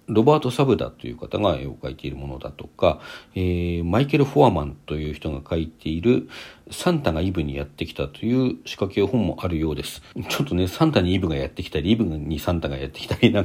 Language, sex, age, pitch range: Japanese, male, 50-69, 80-130 Hz